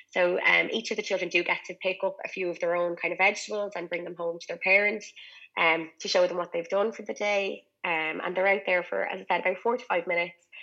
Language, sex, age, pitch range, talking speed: English, female, 20-39, 170-200 Hz, 280 wpm